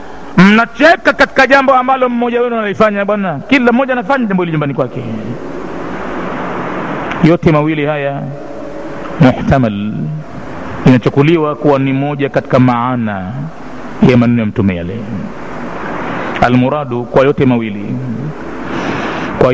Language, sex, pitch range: Swahili, male, 145-185 Hz